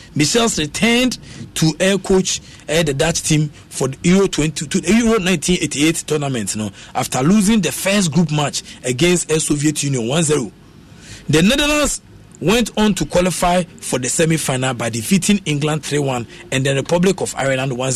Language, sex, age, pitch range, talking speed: English, male, 50-69, 145-200 Hz, 155 wpm